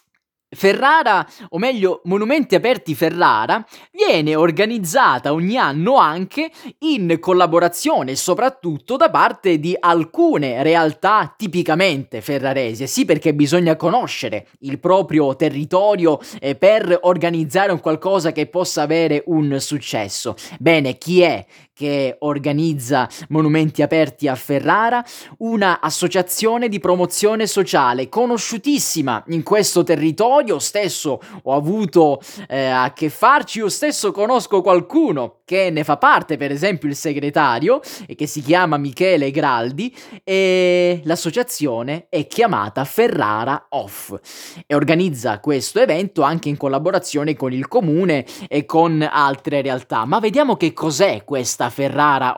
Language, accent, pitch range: Italian, native, 150-200 Hz